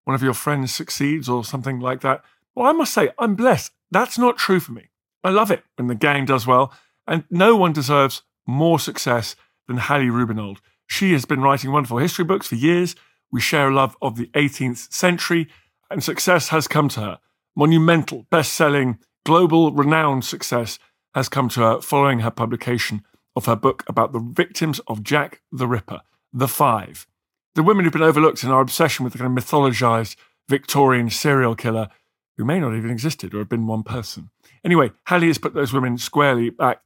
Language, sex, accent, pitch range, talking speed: English, male, British, 120-165 Hz, 195 wpm